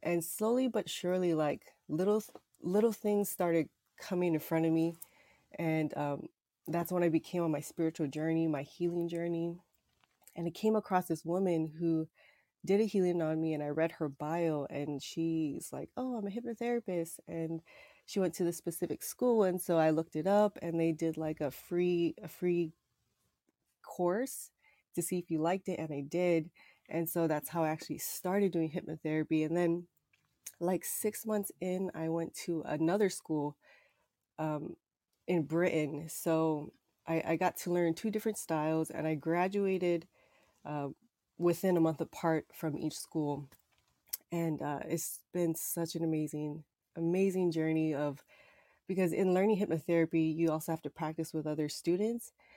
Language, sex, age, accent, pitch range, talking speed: English, female, 30-49, American, 155-180 Hz, 170 wpm